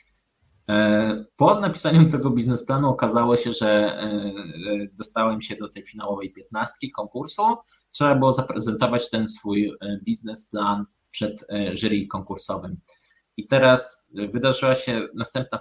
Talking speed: 110 wpm